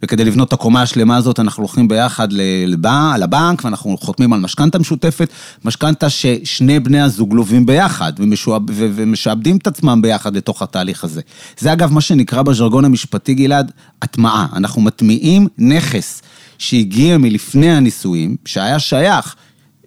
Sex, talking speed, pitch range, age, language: male, 135 wpm, 115-150 Hz, 30-49, Hebrew